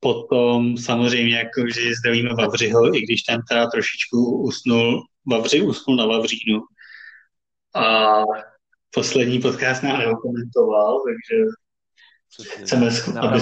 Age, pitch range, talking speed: 30-49, 115-140 Hz, 105 wpm